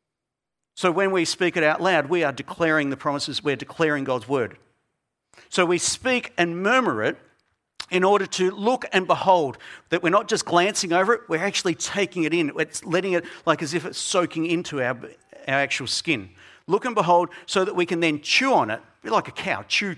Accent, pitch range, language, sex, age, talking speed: Australian, 150-190 Hz, English, male, 50-69, 205 wpm